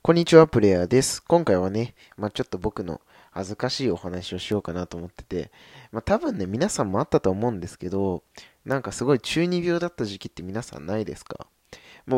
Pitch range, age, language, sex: 90-130 Hz, 20-39, Japanese, male